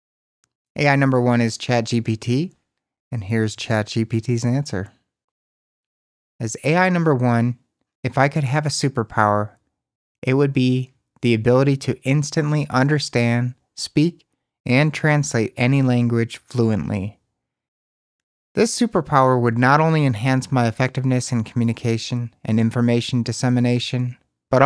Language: English